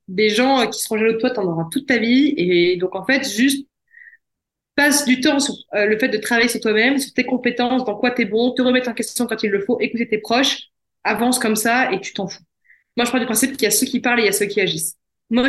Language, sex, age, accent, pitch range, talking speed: French, female, 20-39, French, 210-255 Hz, 280 wpm